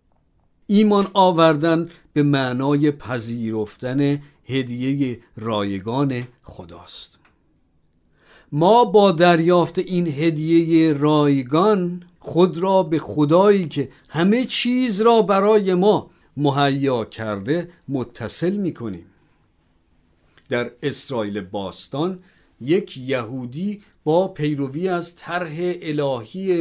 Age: 50-69